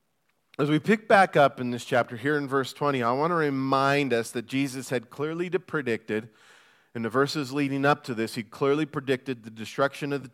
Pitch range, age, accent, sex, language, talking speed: 125-165 Hz, 40-59, American, male, English, 210 wpm